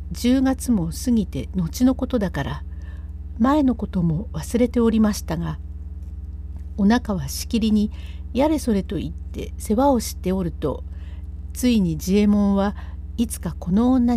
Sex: female